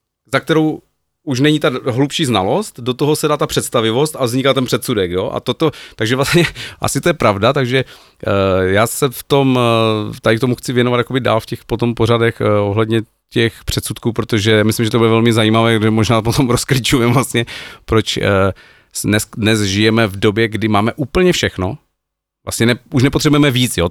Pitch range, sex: 105-130 Hz, male